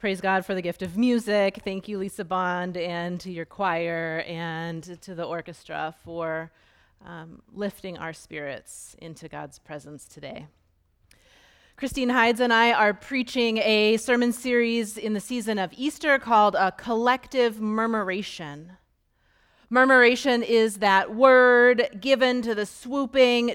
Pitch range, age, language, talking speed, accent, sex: 190-240 Hz, 30-49, English, 140 wpm, American, female